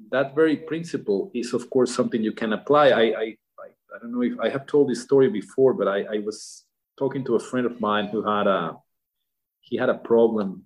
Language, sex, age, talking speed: English, male, 40-59, 220 wpm